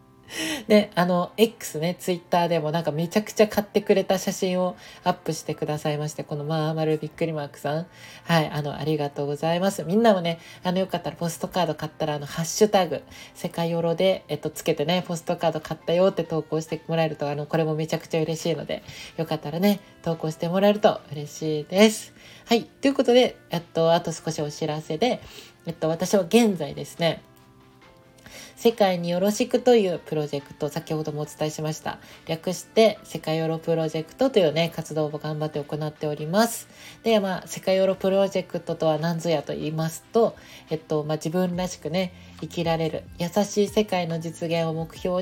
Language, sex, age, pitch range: Japanese, female, 20-39, 155-185 Hz